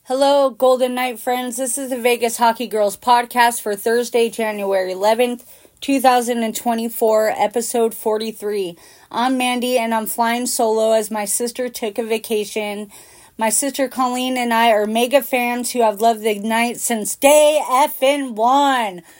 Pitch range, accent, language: 220-255 Hz, American, English